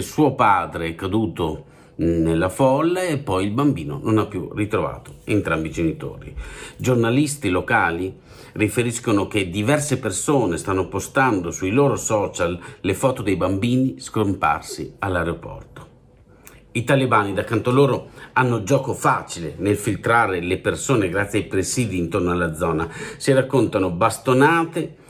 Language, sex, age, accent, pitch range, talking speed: Italian, male, 50-69, native, 105-140 Hz, 130 wpm